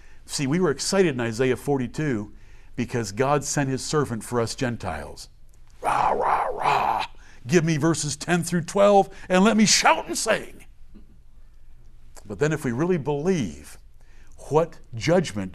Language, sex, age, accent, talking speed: English, male, 60-79, American, 145 wpm